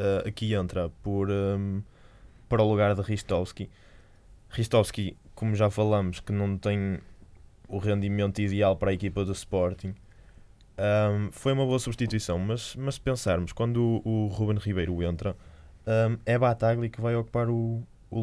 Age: 20-39